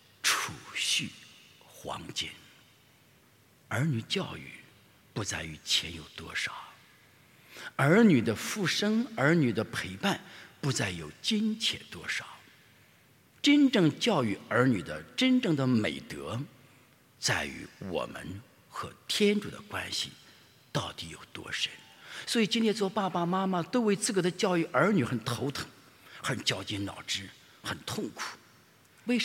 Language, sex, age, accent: English, male, 50-69, Chinese